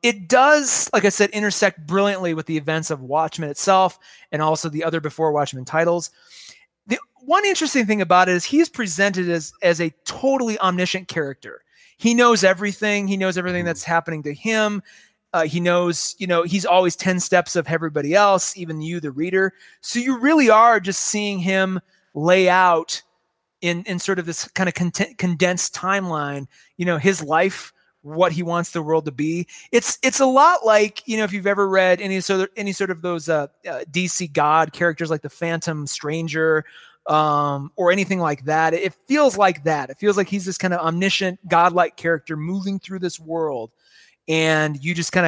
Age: 30-49